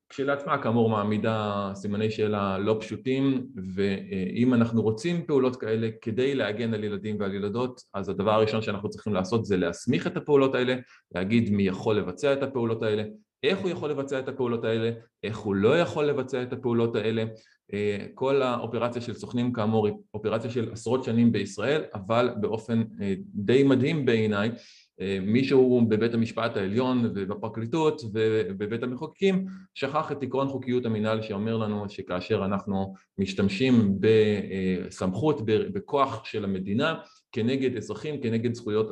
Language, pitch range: Hebrew, 105-130 Hz